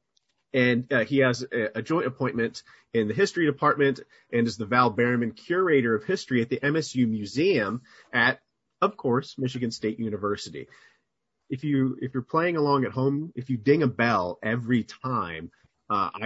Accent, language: American, English